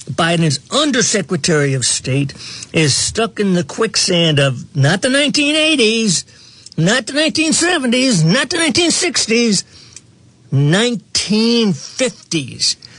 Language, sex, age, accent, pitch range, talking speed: English, male, 60-79, American, 145-205 Hz, 90 wpm